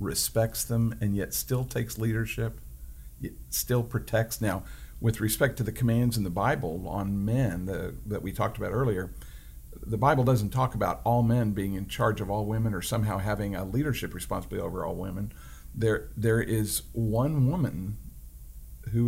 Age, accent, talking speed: 50-69, American, 175 wpm